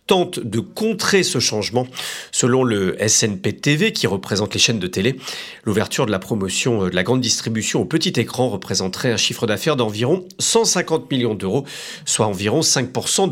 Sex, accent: male, French